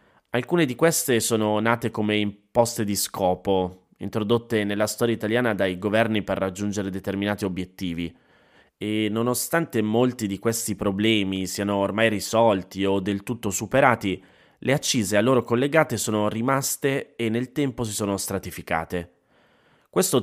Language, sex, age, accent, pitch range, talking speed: Italian, male, 20-39, native, 95-115 Hz, 135 wpm